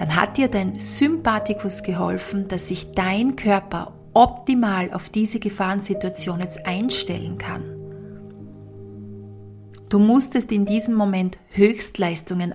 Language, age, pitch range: German, 40-59, 180-225 Hz